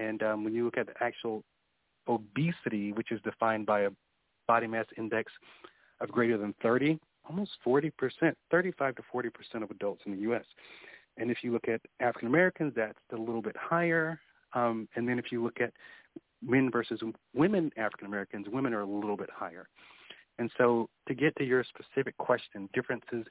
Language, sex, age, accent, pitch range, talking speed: English, male, 40-59, American, 105-130 Hz, 175 wpm